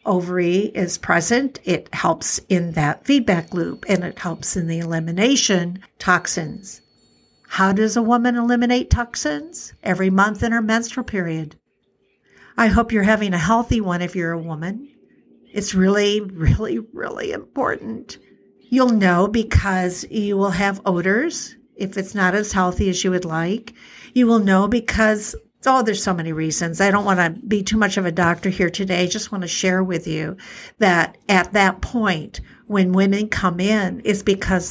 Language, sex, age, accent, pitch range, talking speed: English, female, 60-79, American, 175-215 Hz, 170 wpm